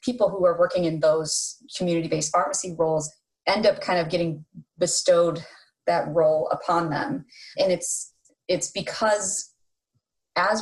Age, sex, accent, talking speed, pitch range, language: 20-39, female, American, 135 wpm, 160-185 Hz, English